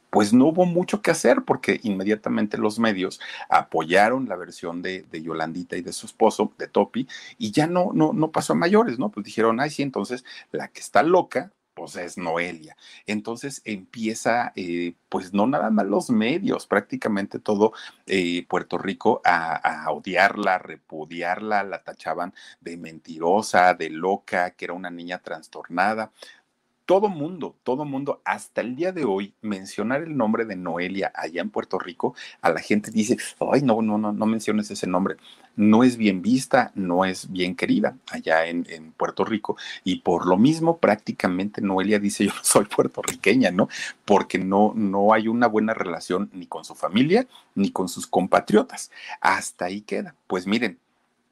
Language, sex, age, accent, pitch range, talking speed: Spanish, male, 40-59, Mexican, 90-120 Hz, 170 wpm